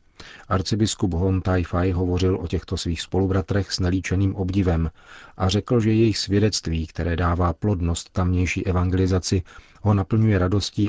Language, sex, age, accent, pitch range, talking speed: Czech, male, 40-59, native, 90-100 Hz, 140 wpm